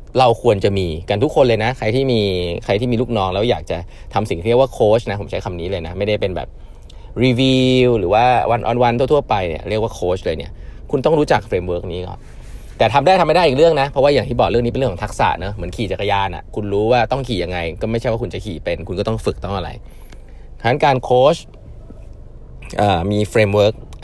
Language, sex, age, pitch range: Thai, male, 20-39, 95-130 Hz